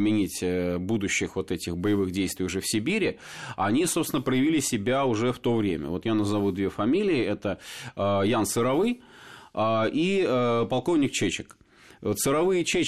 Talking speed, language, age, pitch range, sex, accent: 130 wpm, Russian, 30-49, 95-115 Hz, male, native